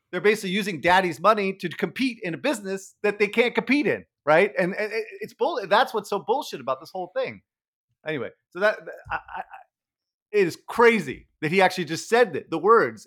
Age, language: 30-49, English